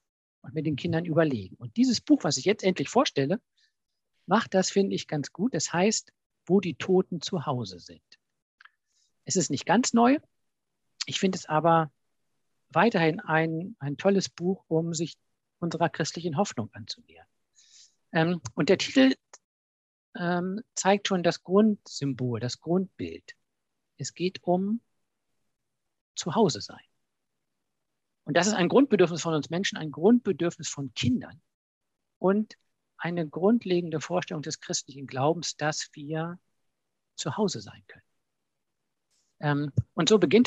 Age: 50-69